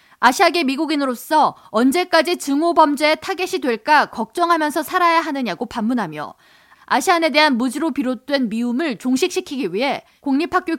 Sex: female